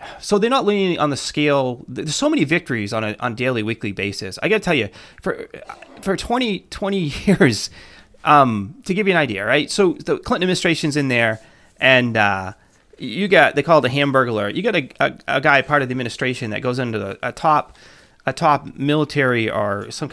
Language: English